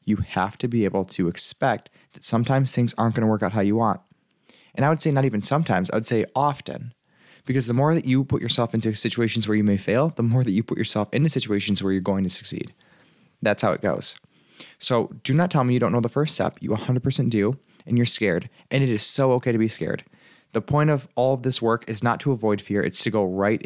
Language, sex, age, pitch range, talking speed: English, male, 20-39, 95-125 Hz, 255 wpm